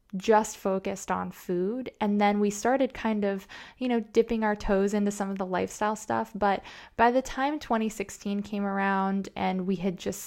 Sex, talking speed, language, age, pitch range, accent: female, 185 wpm, English, 20-39, 185-205 Hz, American